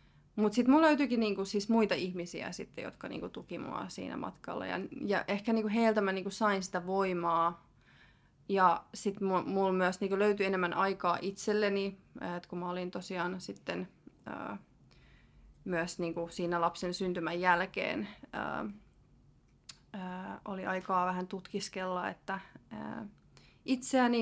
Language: Finnish